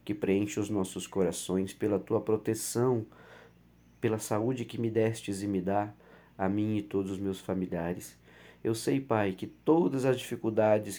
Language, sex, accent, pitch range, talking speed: Portuguese, male, Brazilian, 95-135 Hz, 160 wpm